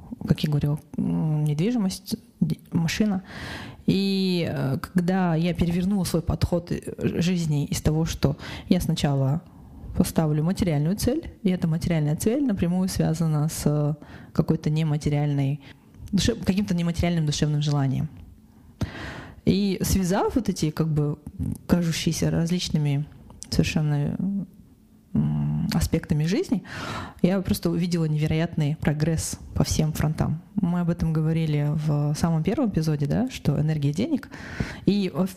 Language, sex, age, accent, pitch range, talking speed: Russian, female, 20-39, native, 150-185 Hz, 105 wpm